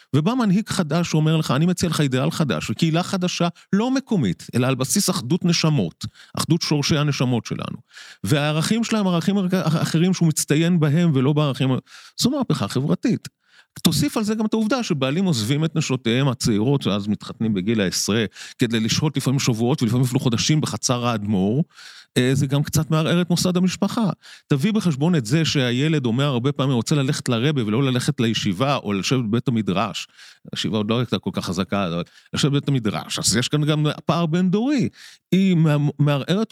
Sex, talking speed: male, 160 wpm